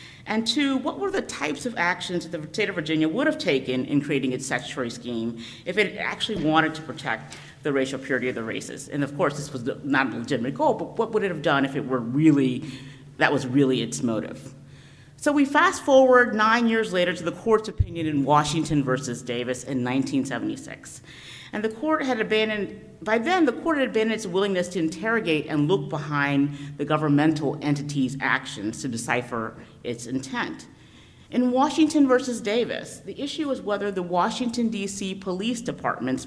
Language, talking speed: English, 190 wpm